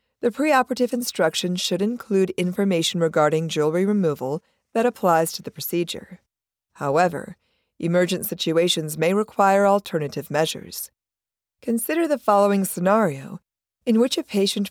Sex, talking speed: female, 120 wpm